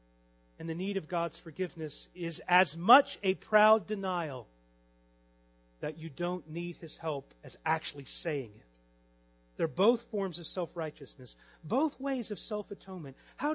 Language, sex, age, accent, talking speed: English, male, 40-59, American, 140 wpm